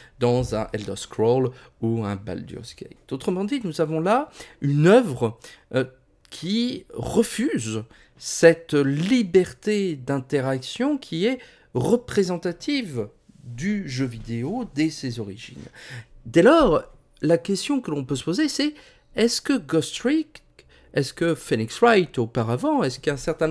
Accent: French